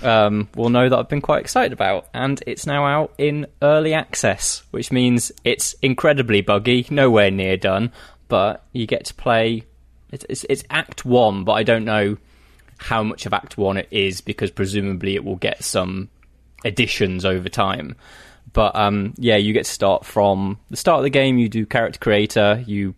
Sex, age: male, 20-39